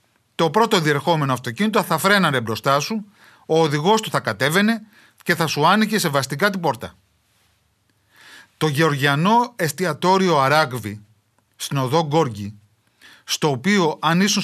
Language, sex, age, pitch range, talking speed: Greek, male, 30-49, 115-175 Hz, 130 wpm